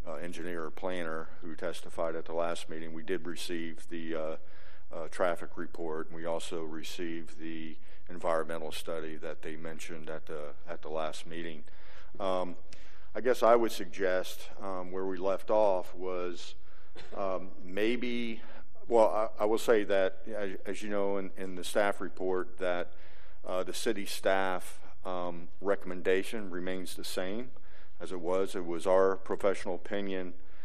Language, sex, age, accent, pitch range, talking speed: English, male, 50-69, American, 85-95 Hz, 155 wpm